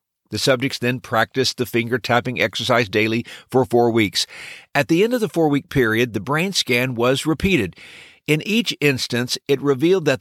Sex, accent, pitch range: male, American, 115-155 Hz